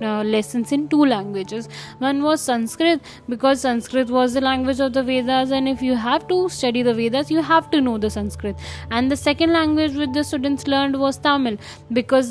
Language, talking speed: Hindi, 200 wpm